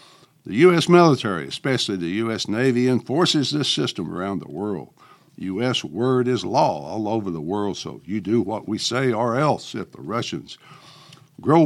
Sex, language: male, English